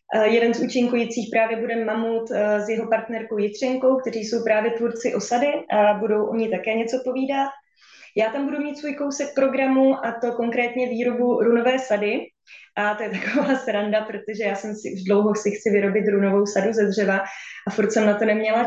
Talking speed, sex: 190 wpm, female